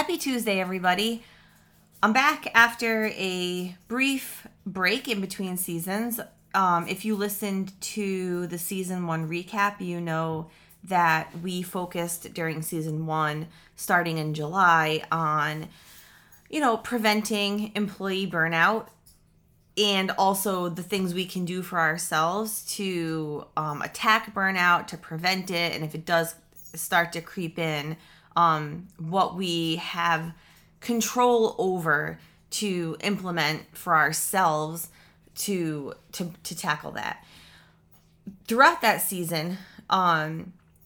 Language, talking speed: English, 120 wpm